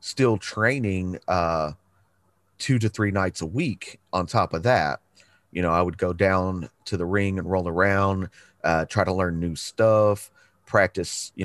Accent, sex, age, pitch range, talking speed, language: American, male, 30-49, 85-100 Hz, 175 wpm, English